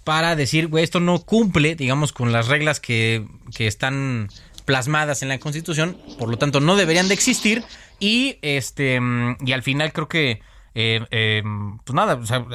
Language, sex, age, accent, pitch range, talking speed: Spanish, male, 20-39, Mexican, 120-160 Hz, 170 wpm